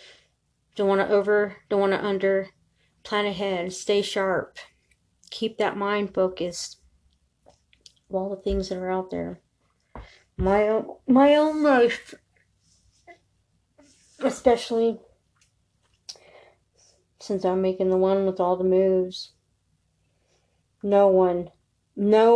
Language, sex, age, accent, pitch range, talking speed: English, female, 30-49, American, 170-210 Hz, 110 wpm